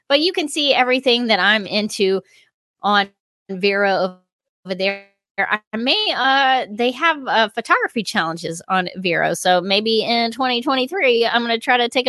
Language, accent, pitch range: English, American, 185-245 Hz